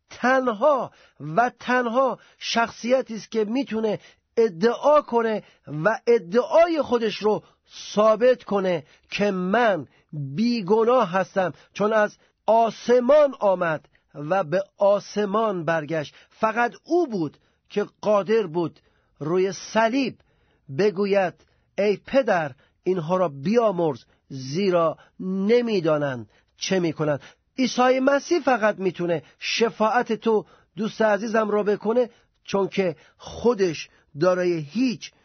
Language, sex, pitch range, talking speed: Persian, male, 170-225 Hz, 100 wpm